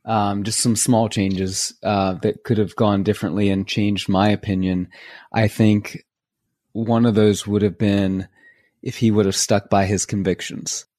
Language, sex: English, male